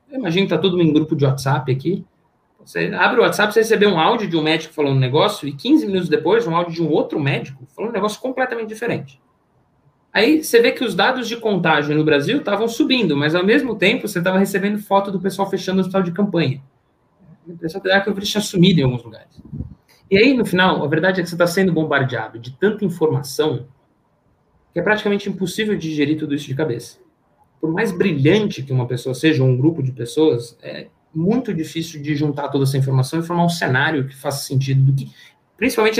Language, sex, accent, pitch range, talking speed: Portuguese, male, Brazilian, 140-195 Hz, 215 wpm